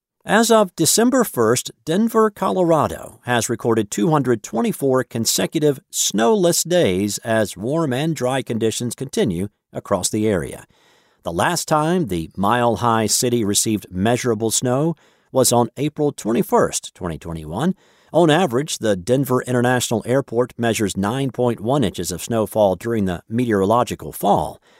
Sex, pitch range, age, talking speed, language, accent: male, 105-140 Hz, 50-69, 120 wpm, English, American